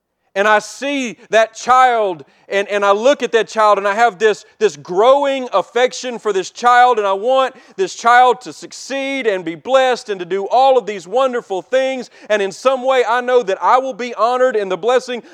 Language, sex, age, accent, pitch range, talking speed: English, male, 40-59, American, 155-245 Hz, 210 wpm